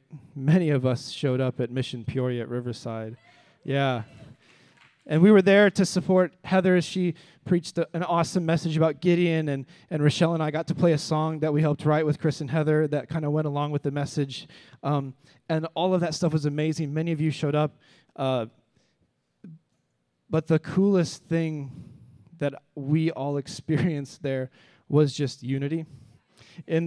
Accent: American